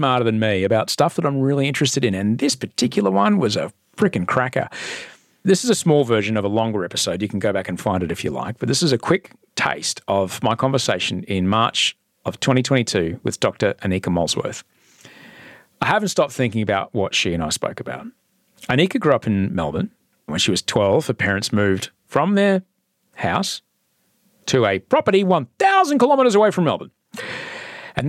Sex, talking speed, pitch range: male, 190 wpm, 110-165 Hz